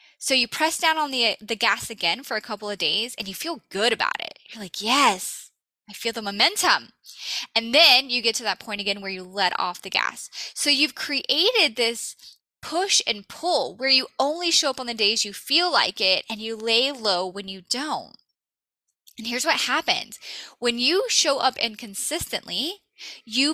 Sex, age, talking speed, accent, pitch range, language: female, 10-29, 195 wpm, American, 215-295 Hz, English